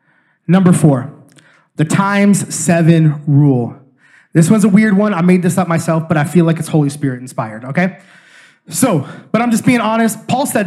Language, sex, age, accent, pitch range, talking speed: English, male, 20-39, American, 155-200 Hz, 185 wpm